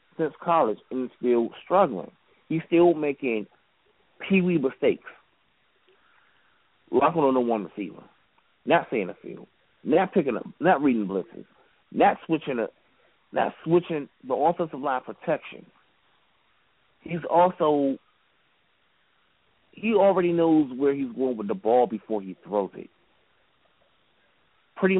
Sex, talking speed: male, 120 wpm